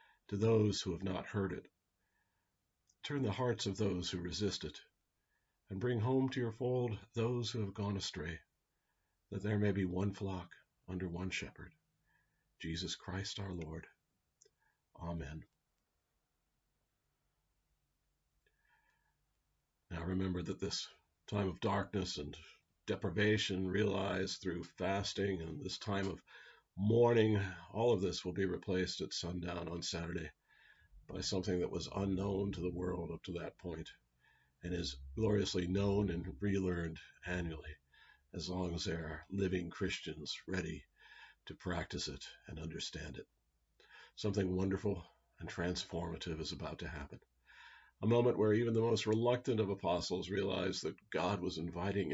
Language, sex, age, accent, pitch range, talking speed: English, male, 50-69, American, 90-100 Hz, 140 wpm